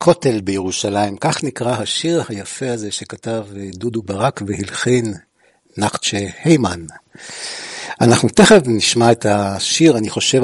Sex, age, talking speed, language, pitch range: male, 60-79, 115 wpm, Hebrew, 105-125 Hz